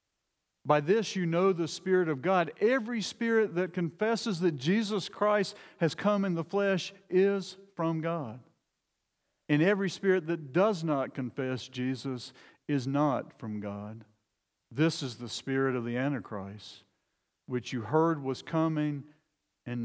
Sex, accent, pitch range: male, American, 120-165 Hz